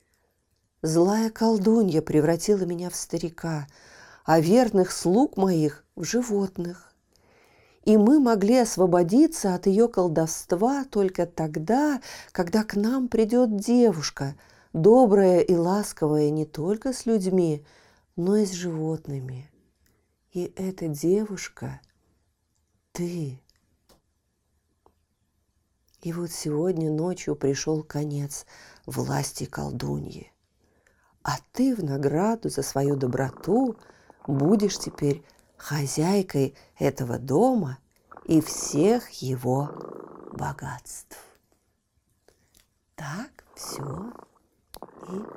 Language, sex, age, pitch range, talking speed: Russian, female, 50-69, 145-205 Hz, 90 wpm